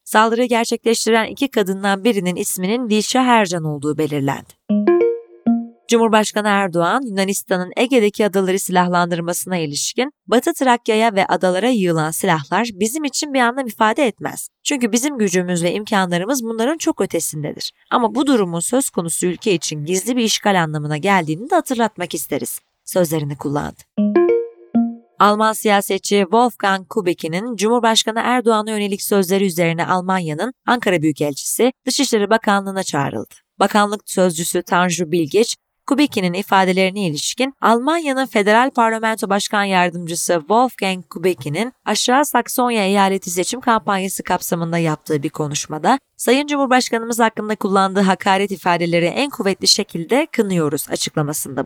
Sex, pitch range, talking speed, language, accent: female, 180-235 Hz, 120 wpm, Turkish, native